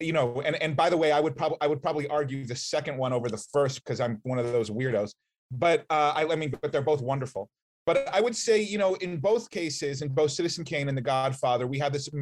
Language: English